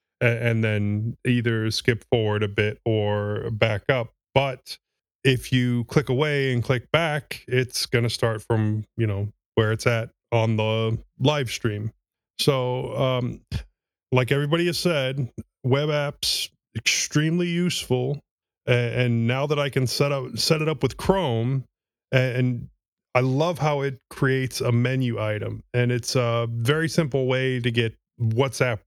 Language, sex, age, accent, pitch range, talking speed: English, male, 30-49, American, 115-135 Hz, 150 wpm